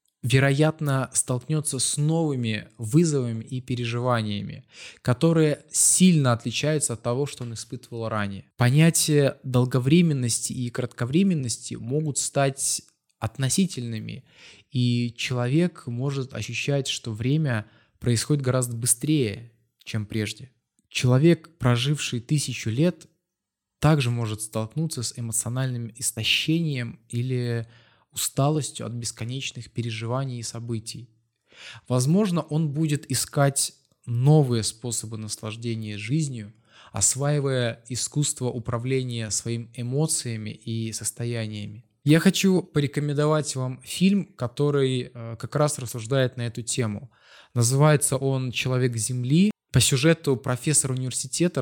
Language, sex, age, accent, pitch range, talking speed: Russian, male, 20-39, native, 115-145 Hz, 100 wpm